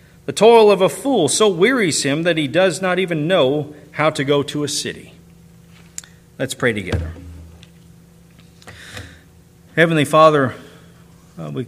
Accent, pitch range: American, 120-150 Hz